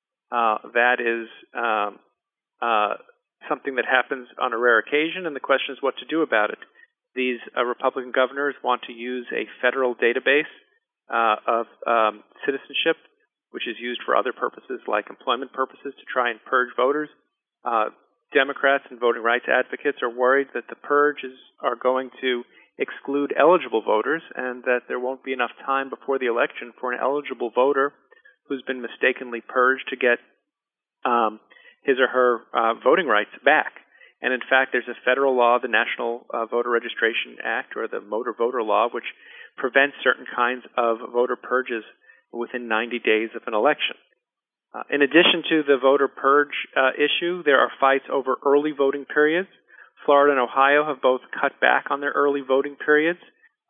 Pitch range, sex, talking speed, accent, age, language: 125-145 Hz, male, 170 wpm, American, 40-59, English